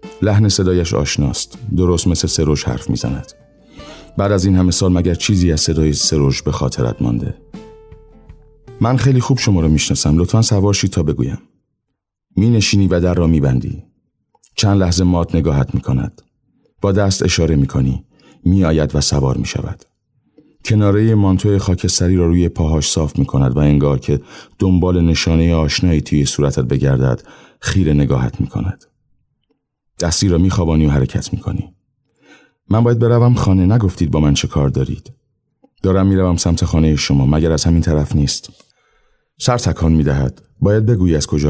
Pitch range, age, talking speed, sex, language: 75-100 Hz, 40-59, 150 wpm, male, Persian